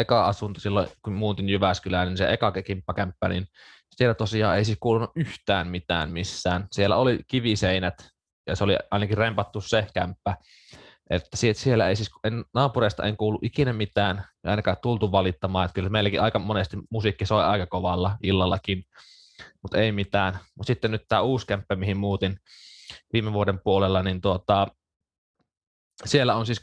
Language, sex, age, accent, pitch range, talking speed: Finnish, male, 20-39, native, 95-110 Hz, 160 wpm